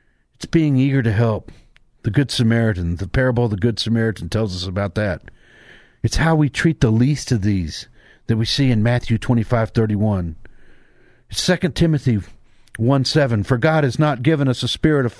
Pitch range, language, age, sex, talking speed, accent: 115-155 Hz, English, 50-69, male, 195 wpm, American